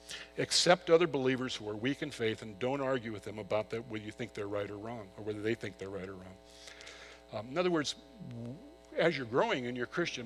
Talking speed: 230 wpm